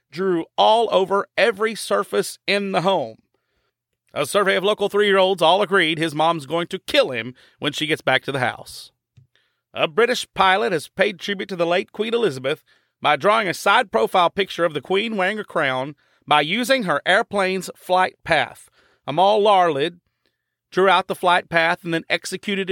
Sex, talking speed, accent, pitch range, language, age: male, 175 wpm, American, 155-195 Hz, English, 40-59